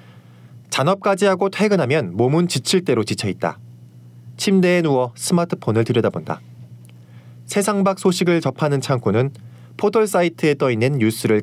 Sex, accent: male, native